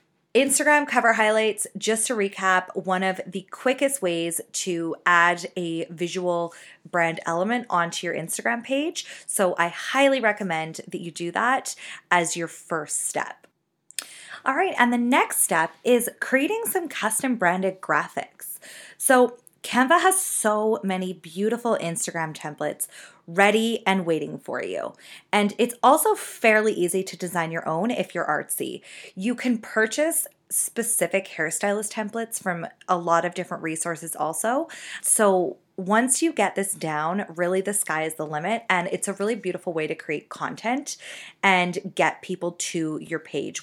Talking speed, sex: 150 wpm, female